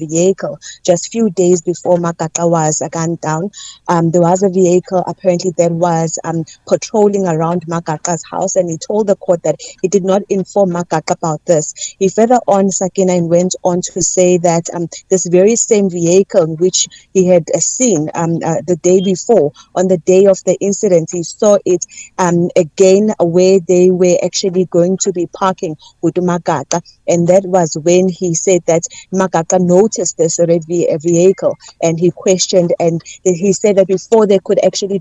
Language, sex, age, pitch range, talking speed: English, female, 30-49, 170-190 Hz, 180 wpm